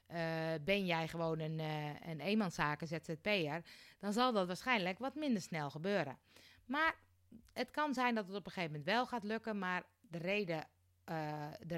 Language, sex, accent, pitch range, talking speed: Dutch, female, Dutch, 155-205 Hz, 170 wpm